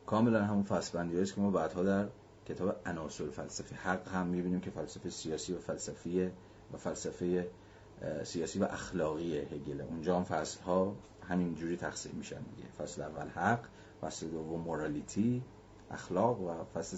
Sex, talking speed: male, 150 wpm